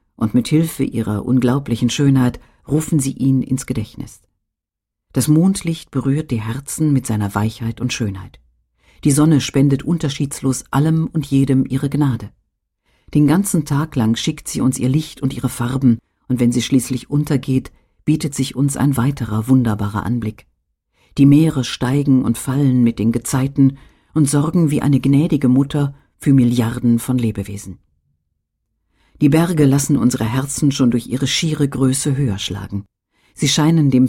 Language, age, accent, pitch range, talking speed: German, 50-69, German, 115-140 Hz, 155 wpm